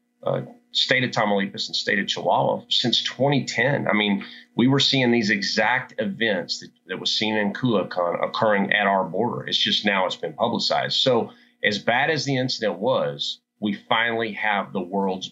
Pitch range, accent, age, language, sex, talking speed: 90-115 Hz, American, 30-49, English, male, 180 wpm